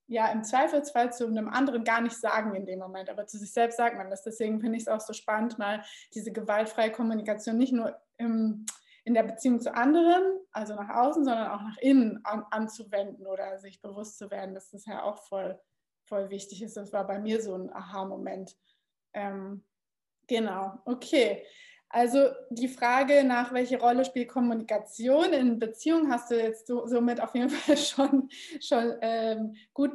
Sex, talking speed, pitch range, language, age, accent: female, 185 wpm, 210-250 Hz, German, 20-39, German